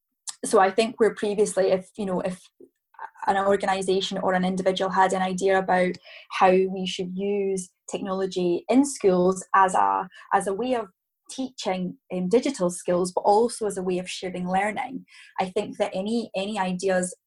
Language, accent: English, British